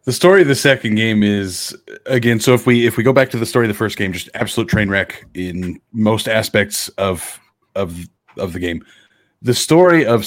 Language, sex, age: English, male, 30-49